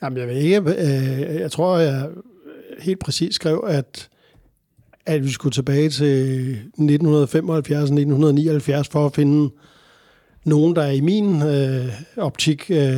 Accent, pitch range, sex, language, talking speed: native, 135-155 Hz, male, Danish, 120 wpm